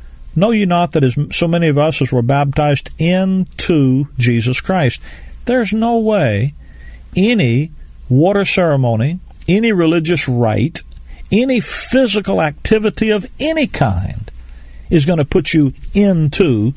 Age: 50-69